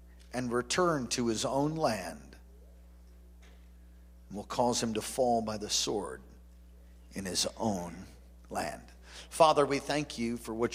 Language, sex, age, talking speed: English, male, 50-69, 135 wpm